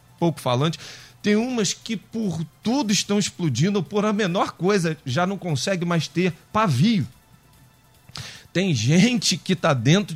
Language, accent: Portuguese, Brazilian